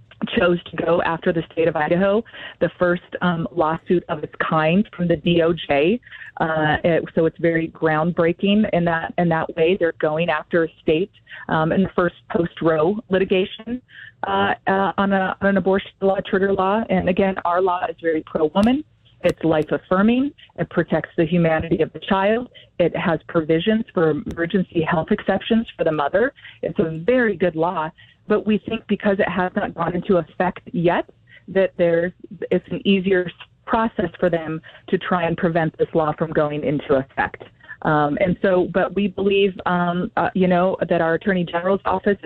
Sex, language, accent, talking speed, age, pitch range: female, English, American, 185 wpm, 30-49, 165-195 Hz